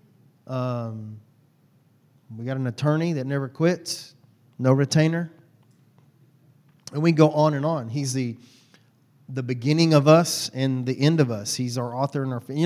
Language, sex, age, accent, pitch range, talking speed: English, male, 40-59, American, 130-155 Hz, 155 wpm